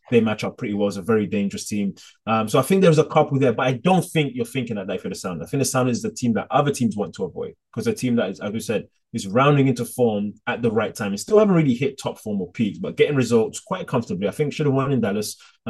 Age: 20-39